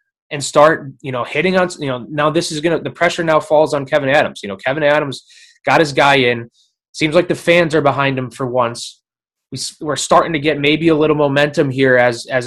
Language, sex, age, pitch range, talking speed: English, male, 20-39, 125-155 Hz, 230 wpm